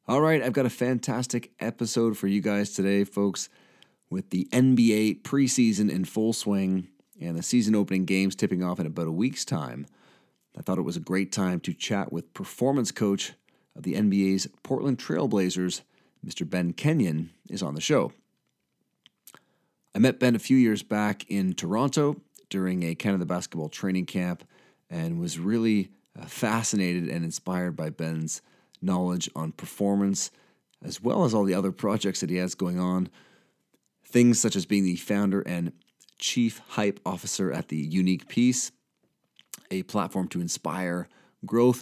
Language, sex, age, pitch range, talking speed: English, male, 40-59, 90-115 Hz, 160 wpm